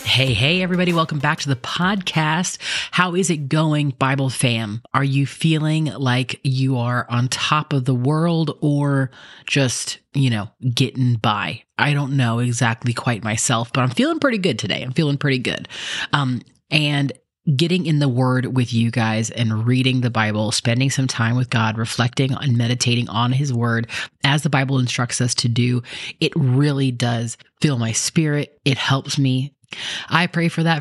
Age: 30-49